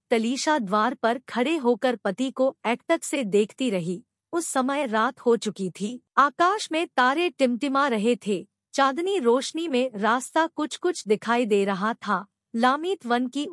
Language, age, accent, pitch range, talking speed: Hindi, 50-69, native, 210-280 Hz, 160 wpm